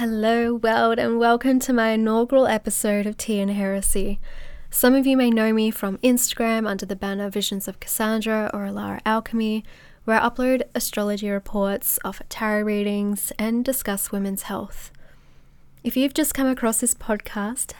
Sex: female